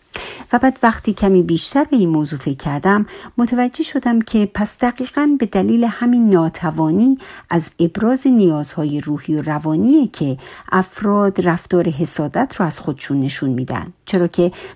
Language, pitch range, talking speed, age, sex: Persian, 155-220 Hz, 140 wpm, 50-69, female